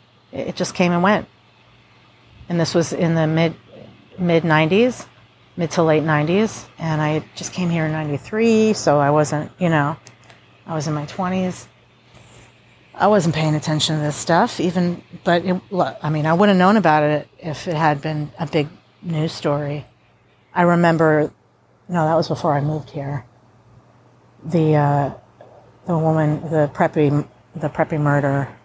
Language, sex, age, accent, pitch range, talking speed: English, female, 40-59, American, 135-170 Hz, 165 wpm